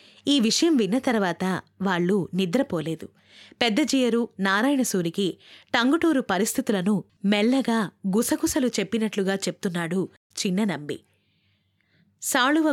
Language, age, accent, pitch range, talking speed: Telugu, 20-39, native, 185-240 Hz, 75 wpm